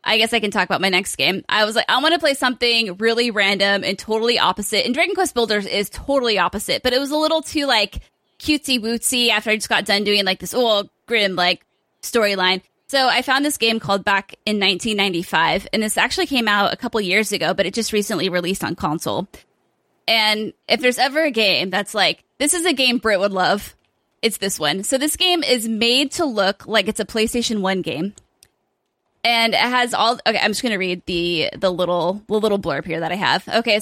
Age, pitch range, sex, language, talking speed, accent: 20-39, 200-255 Hz, female, English, 225 wpm, American